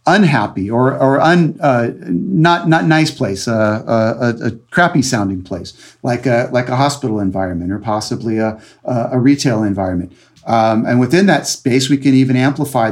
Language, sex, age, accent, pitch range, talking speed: English, male, 40-59, American, 110-130 Hz, 170 wpm